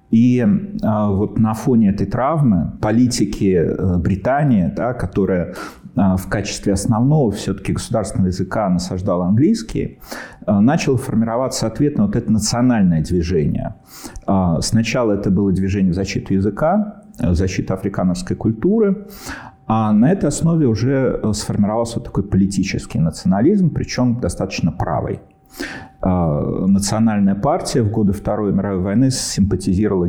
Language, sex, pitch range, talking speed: Russian, male, 100-130 Hz, 115 wpm